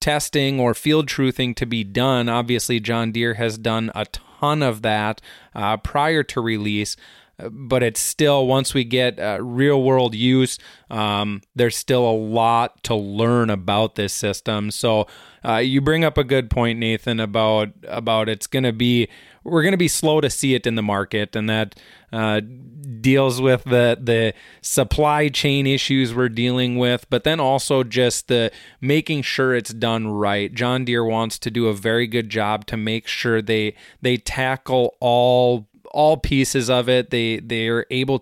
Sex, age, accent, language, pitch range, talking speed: male, 20-39, American, English, 110-130 Hz, 175 wpm